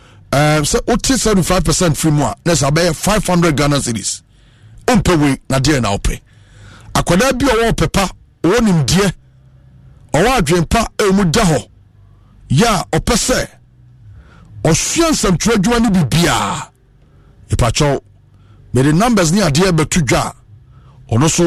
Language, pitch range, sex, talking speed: English, 110-165 Hz, male, 60 wpm